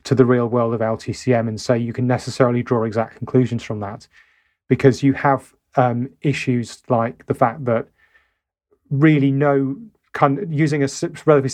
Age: 30-49